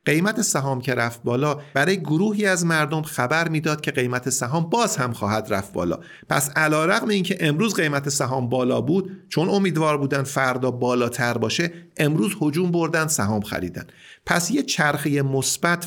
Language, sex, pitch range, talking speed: Persian, male, 120-170 Hz, 165 wpm